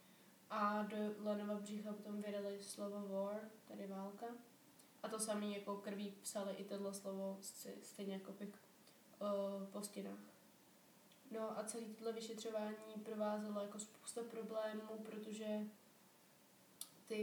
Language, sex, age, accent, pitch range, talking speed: Czech, female, 20-39, native, 200-220 Hz, 115 wpm